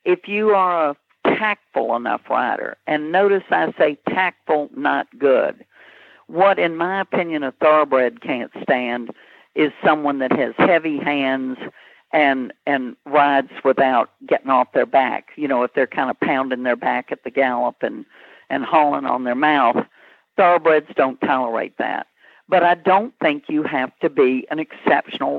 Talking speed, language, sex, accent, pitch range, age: 160 wpm, English, female, American, 145-195 Hz, 60-79